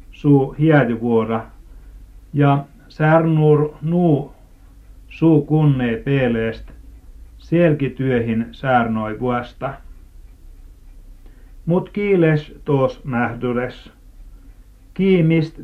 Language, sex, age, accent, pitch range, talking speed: Finnish, male, 60-79, native, 115-145 Hz, 60 wpm